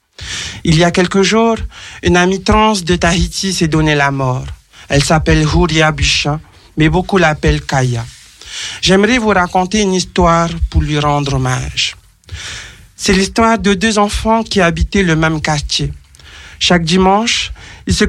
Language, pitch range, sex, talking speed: French, 150-190 Hz, male, 150 wpm